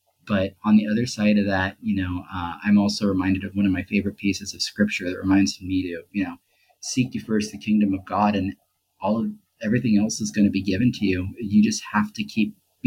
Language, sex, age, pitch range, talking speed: English, male, 30-49, 95-105 Hz, 240 wpm